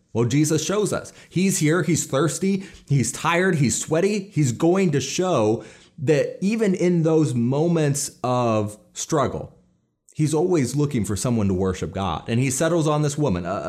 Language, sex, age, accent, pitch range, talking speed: English, male, 30-49, American, 100-150 Hz, 165 wpm